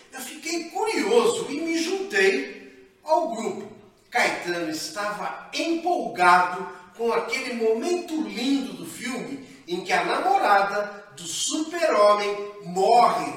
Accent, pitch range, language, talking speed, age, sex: Brazilian, 195-320 Hz, Portuguese, 110 wpm, 40-59, male